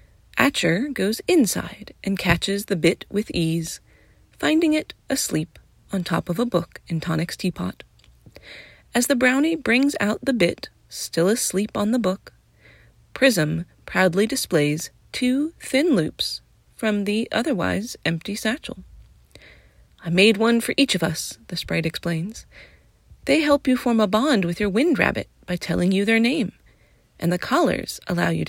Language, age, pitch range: English, 30-49, 165-255 Hz